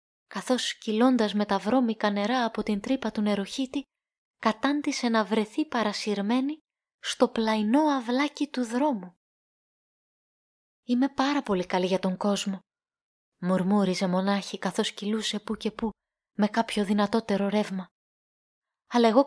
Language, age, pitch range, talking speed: Greek, 20-39, 205-270 Hz, 125 wpm